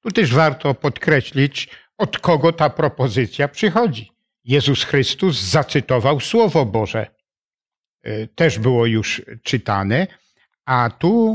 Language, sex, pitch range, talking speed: Polish, male, 125-170 Hz, 105 wpm